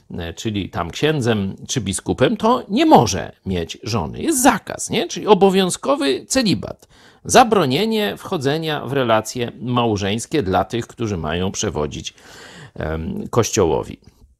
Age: 50-69